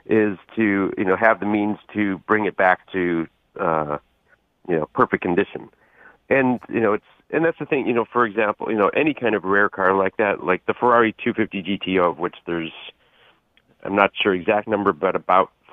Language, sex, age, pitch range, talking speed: English, male, 40-59, 90-110 Hz, 200 wpm